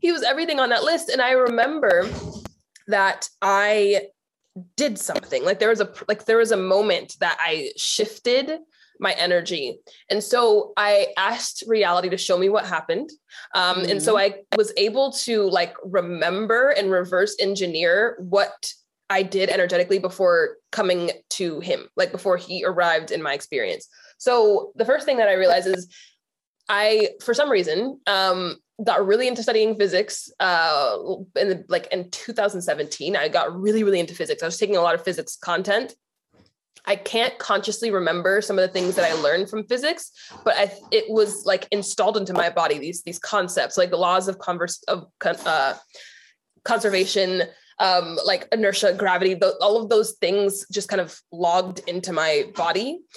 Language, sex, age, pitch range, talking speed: English, female, 20-39, 185-240 Hz, 165 wpm